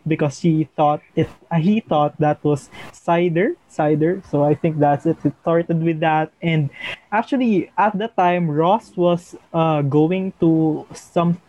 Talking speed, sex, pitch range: 155 wpm, male, 150-175 Hz